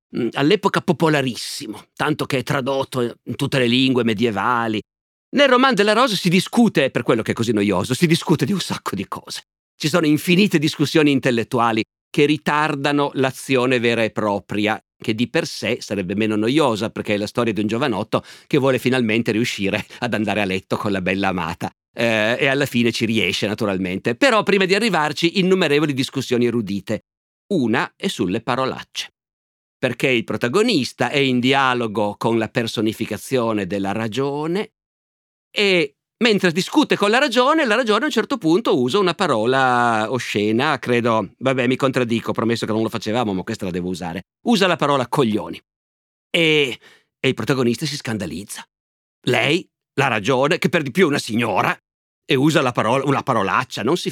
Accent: native